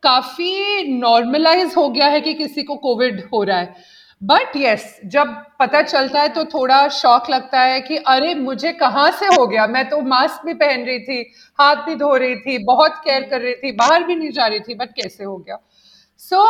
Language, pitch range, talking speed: Hindi, 240-305 Hz, 215 wpm